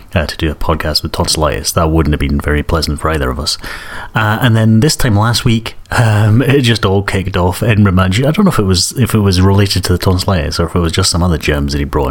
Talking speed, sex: 275 wpm, male